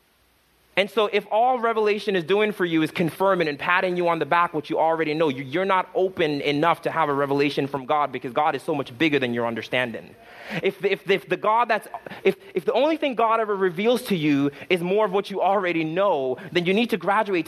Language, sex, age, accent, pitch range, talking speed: English, male, 30-49, American, 175-230 Hz, 215 wpm